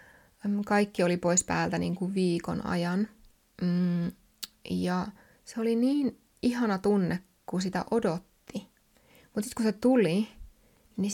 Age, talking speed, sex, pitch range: 20-39, 125 wpm, female, 175-210 Hz